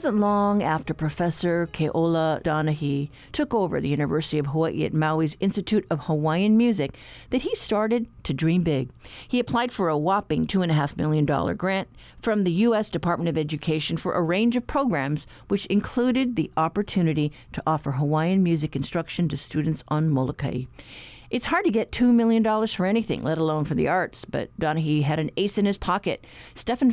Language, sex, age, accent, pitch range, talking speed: English, female, 50-69, American, 150-205 Hz, 175 wpm